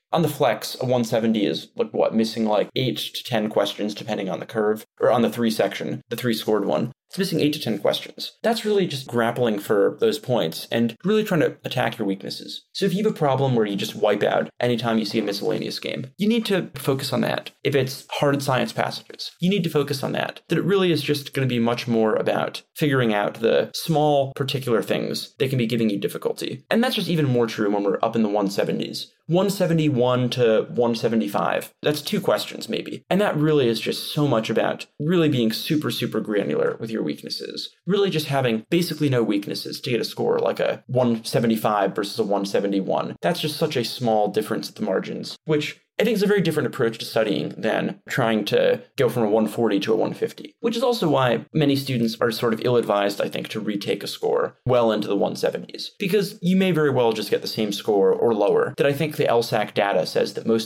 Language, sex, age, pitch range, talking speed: English, male, 20-39, 115-180 Hz, 225 wpm